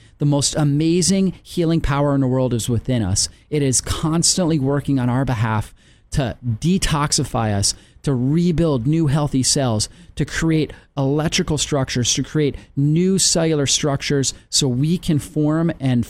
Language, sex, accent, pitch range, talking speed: English, male, American, 125-160 Hz, 150 wpm